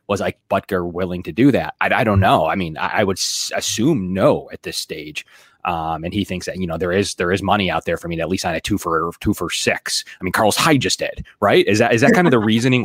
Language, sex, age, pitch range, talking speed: English, male, 20-39, 95-120 Hz, 295 wpm